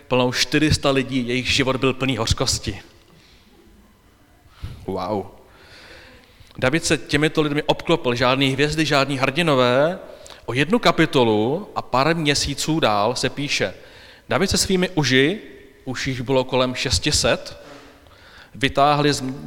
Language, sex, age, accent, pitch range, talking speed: Czech, male, 30-49, native, 105-150 Hz, 115 wpm